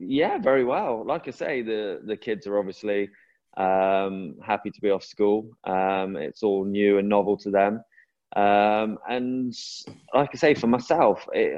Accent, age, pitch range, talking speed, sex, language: British, 20-39, 95-105 Hz, 170 wpm, male, English